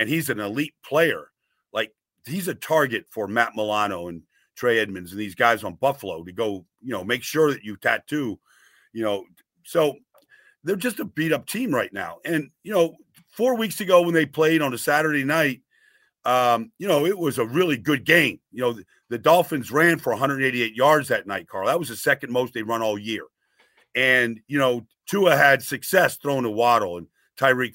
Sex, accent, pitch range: male, American, 125-170 Hz